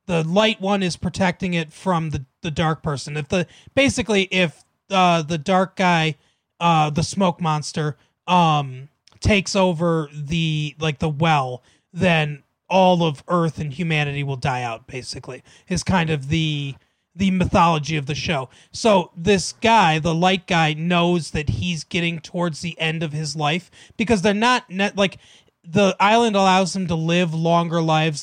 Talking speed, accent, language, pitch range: 165 wpm, American, English, 150-185 Hz